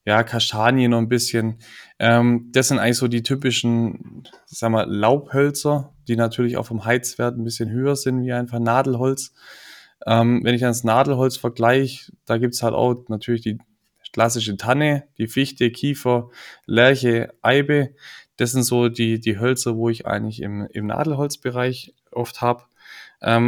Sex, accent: male, German